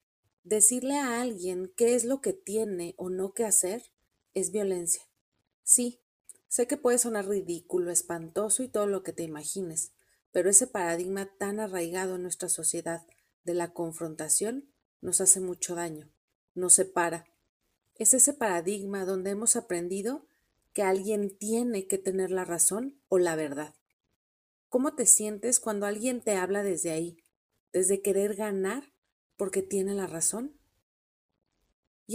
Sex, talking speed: female, 145 wpm